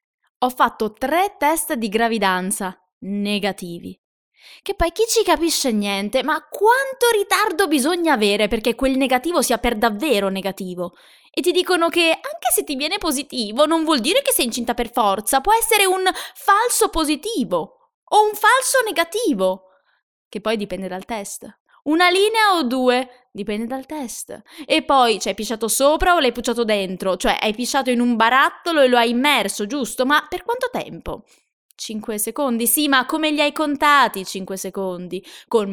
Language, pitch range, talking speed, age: Italian, 210-315 Hz, 165 wpm, 20-39